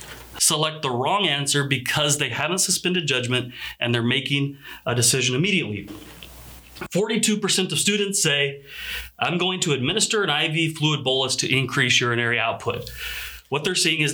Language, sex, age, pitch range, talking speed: English, male, 30-49, 130-195 Hz, 150 wpm